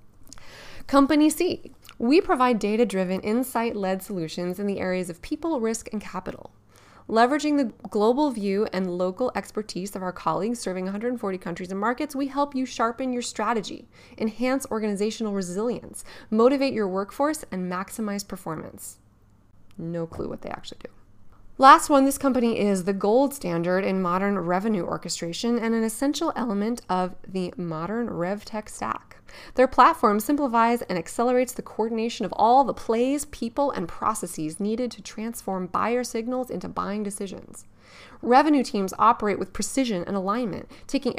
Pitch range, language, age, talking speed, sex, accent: 185-245 Hz, English, 20-39, 150 wpm, female, American